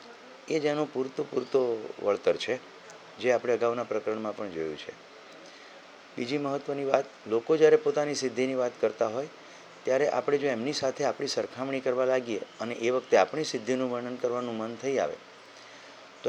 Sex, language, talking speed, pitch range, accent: male, Gujarati, 120 wpm, 115-140 Hz, native